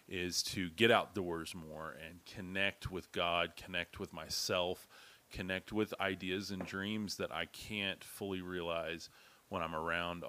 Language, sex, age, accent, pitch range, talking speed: English, male, 30-49, American, 85-105 Hz, 145 wpm